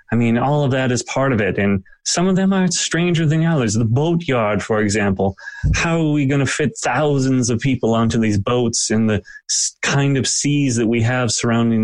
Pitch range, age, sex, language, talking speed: 105-135 Hz, 30-49, male, English, 215 wpm